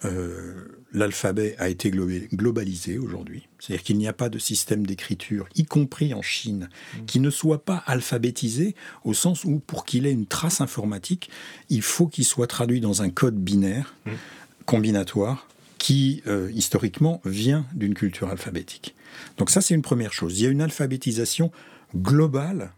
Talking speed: 160 wpm